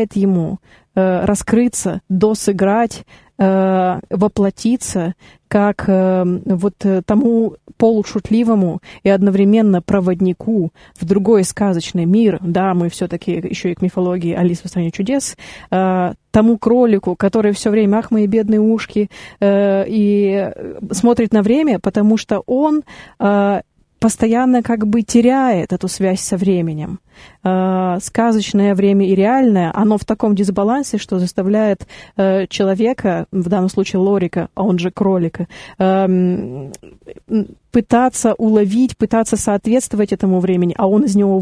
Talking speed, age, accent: 115 wpm, 20-39, native